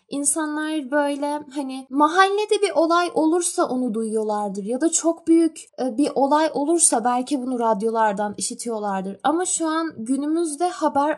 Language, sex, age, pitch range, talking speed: Turkish, female, 10-29, 245-315 Hz, 135 wpm